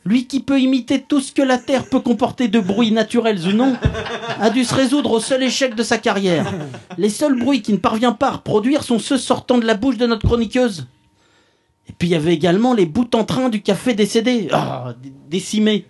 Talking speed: 225 wpm